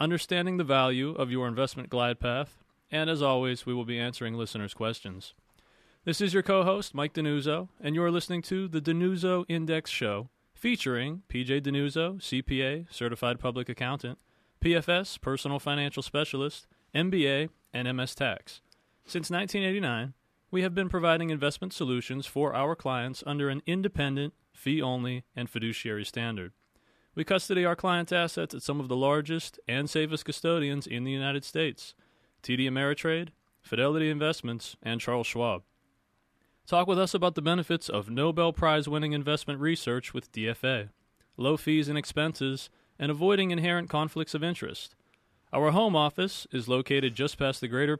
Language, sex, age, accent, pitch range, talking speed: English, male, 30-49, American, 125-165 Hz, 150 wpm